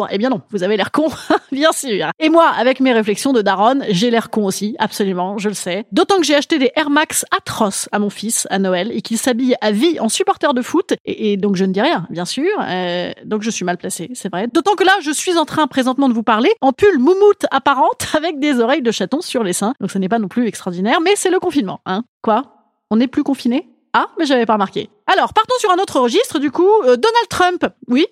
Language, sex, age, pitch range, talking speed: French, female, 30-49, 215-315 Hz, 255 wpm